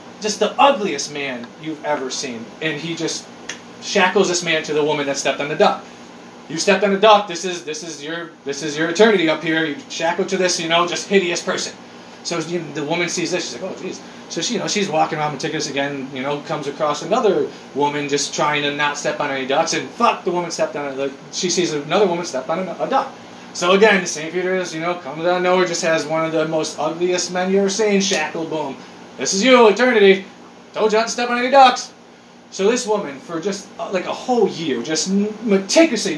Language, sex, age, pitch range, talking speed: English, male, 30-49, 155-210 Hz, 240 wpm